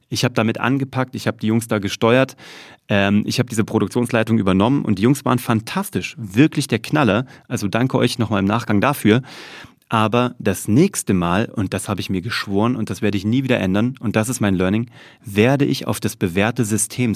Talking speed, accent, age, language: 205 wpm, German, 30-49, German